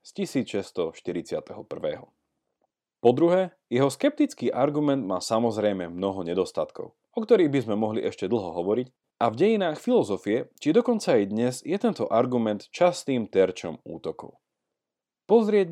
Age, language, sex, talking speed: 40-59, Slovak, male, 125 wpm